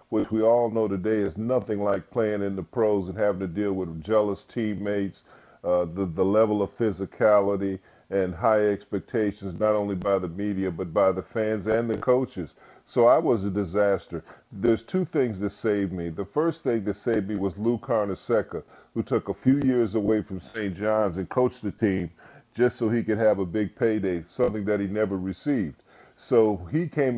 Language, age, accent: English, 40-59, American